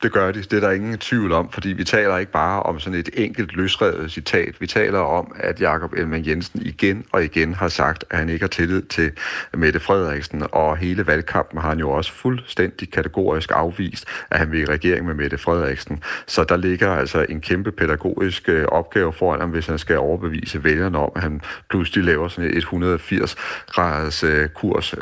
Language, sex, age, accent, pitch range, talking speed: Danish, male, 40-59, native, 80-95 Hz, 195 wpm